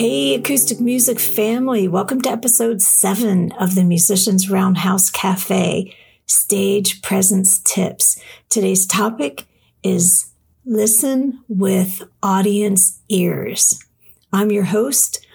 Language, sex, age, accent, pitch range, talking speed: English, female, 50-69, American, 185-220 Hz, 100 wpm